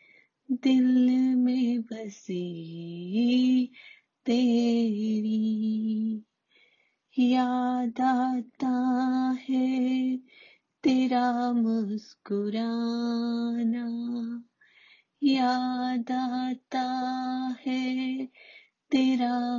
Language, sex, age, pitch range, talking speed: Hindi, female, 30-49, 240-270 Hz, 40 wpm